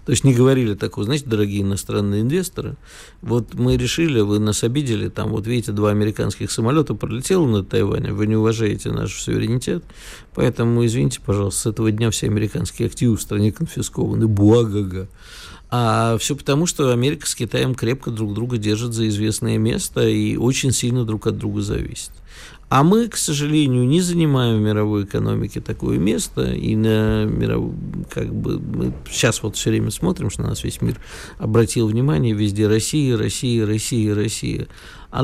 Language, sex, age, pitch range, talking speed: Russian, male, 50-69, 105-125 Hz, 170 wpm